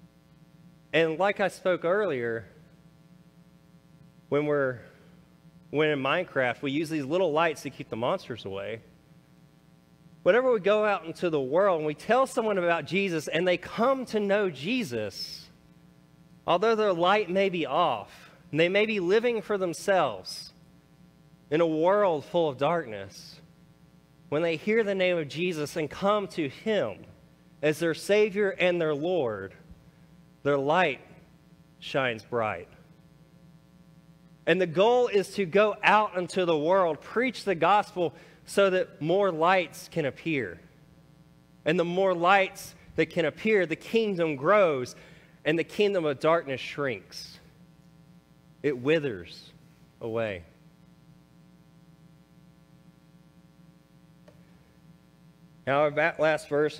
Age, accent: 30-49, American